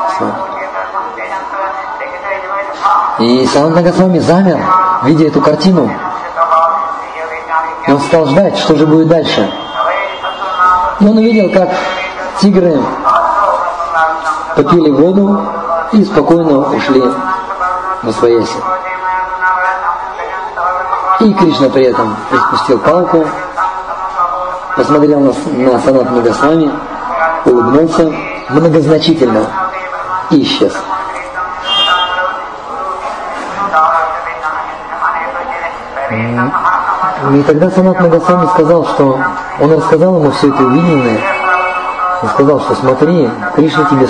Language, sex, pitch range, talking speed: Russian, male, 140-180 Hz, 80 wpm